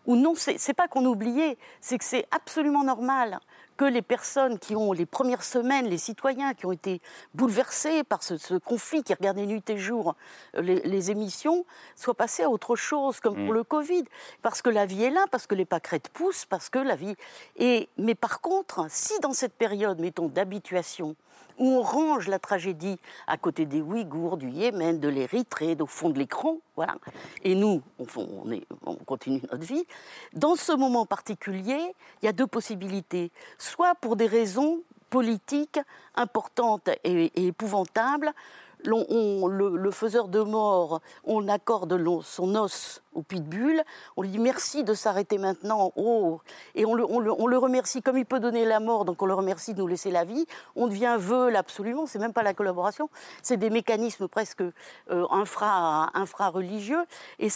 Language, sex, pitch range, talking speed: French, female, 195-265 Hz, 185 wpm